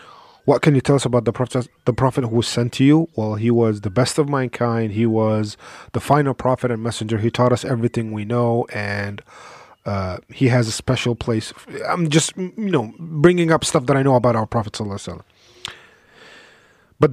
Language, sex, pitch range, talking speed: English, male, 120-160 Hz, 195 wpm